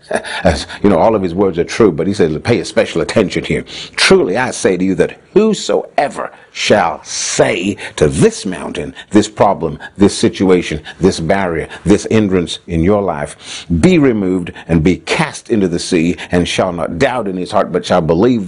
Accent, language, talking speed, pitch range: American, English, 190 wpm, 85-100 Hz